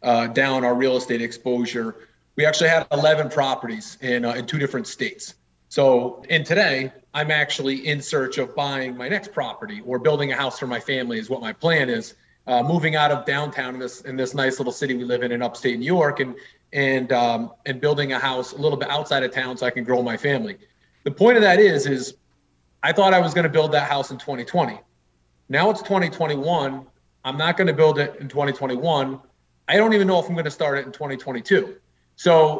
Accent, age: American, 30-49